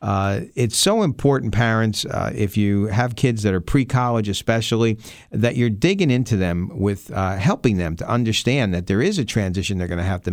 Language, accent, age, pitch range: English, American, 50-69, 95-125 Hz